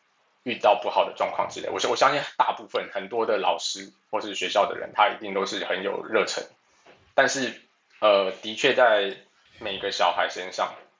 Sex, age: male, 20-39